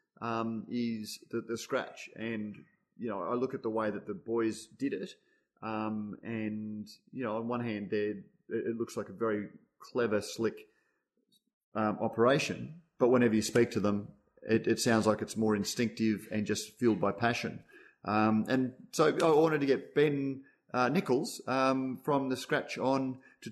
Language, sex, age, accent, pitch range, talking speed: English, male, 30-49, Australian, 110-140 Hz, 175 wpm